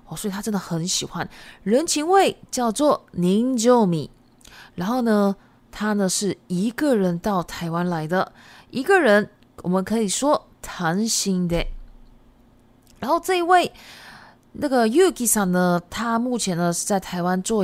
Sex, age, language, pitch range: female, 20-39, Japanese, 180-255 Hz